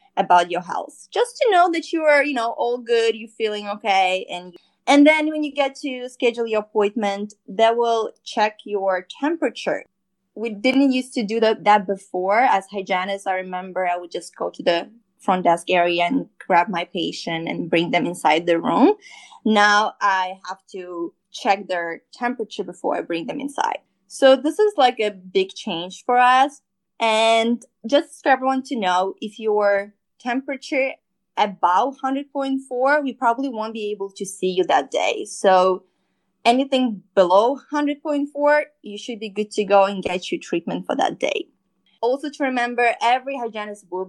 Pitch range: 190-265 Hz